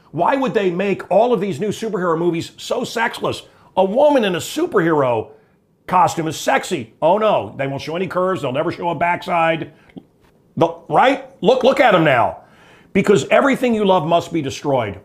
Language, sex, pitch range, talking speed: English, male, 150-195 Hz, 185 wpm